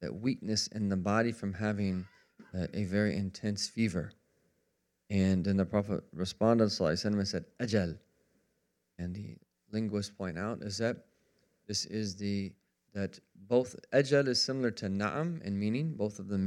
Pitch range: 95-110 Hz